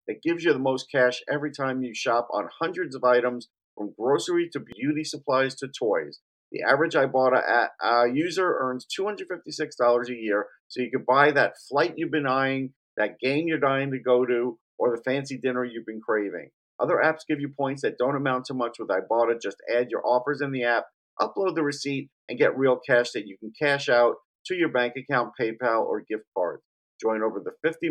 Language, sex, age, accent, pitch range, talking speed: English, male, 50-69, American, 120-150 Hz, 205 wpm